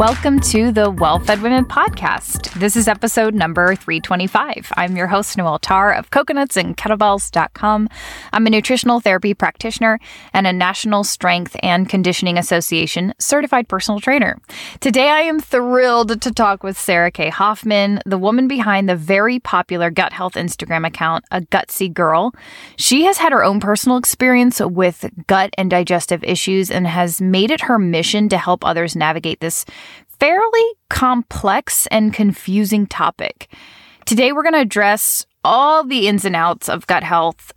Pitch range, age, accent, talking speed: 180-240 Hz, 10-29, American, 155 wpm